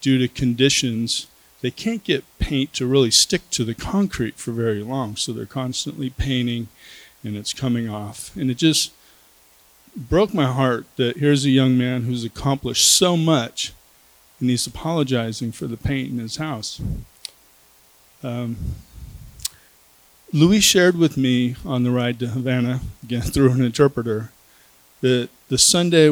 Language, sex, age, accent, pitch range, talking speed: English, male, 40-59, American, 110-140 Hz, 150 wpm